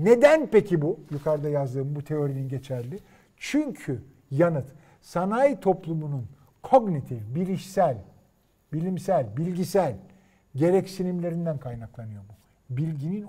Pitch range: 125-195 Hz